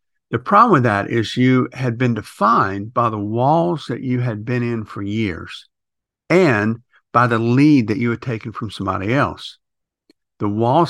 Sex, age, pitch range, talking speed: male, 60-79, 100-125 Hz, 175 wpm